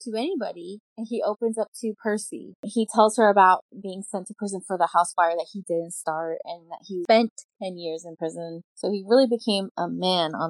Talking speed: 225 wpm